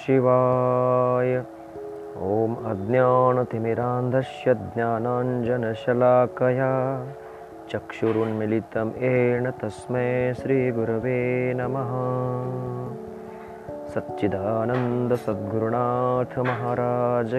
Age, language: 30-49, Marathi